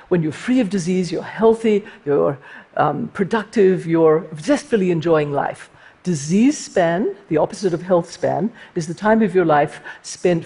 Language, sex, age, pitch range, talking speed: Spanish, female, 50-69, 160-205 Hz, 160 wpm